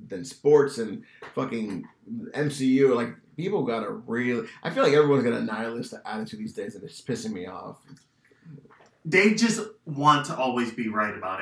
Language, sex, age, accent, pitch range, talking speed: English, male, 30-49, American, 125-160 Hz, 175 wpm